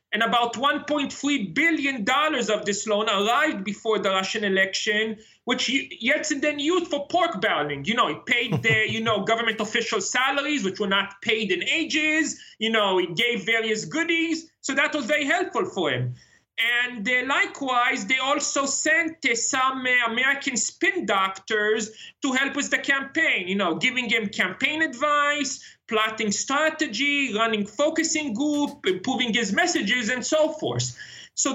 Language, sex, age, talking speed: English, male, 30-49, 155 wpm